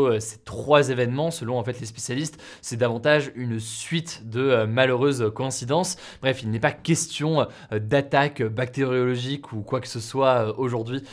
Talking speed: 150 wpm